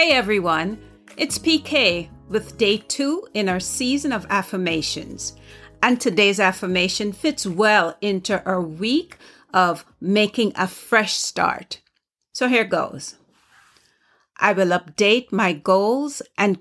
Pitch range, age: 175-235 Hz, 50-69